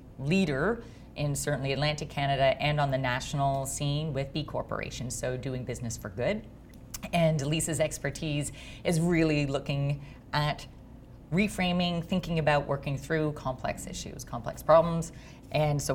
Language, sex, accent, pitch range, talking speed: English, female, American, 135-160 Hz, 135 wpm